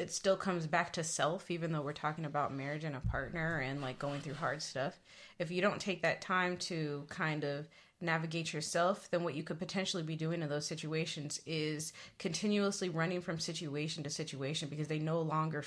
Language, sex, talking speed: English, female, 205 wpm